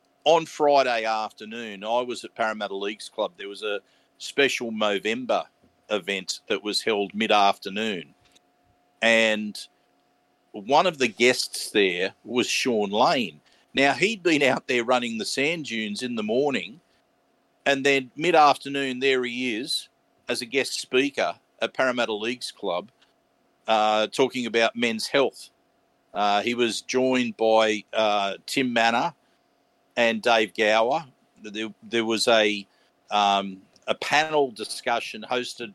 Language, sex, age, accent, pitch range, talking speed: English, male, 50-69, Australian, 110-135 Hz, 135 wpm